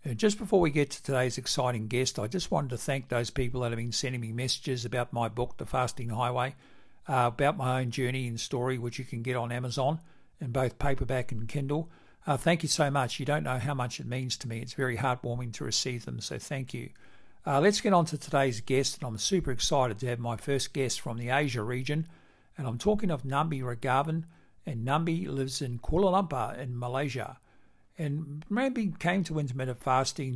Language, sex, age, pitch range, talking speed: English, male, 60-79, 125-145 Hz, 215 wpm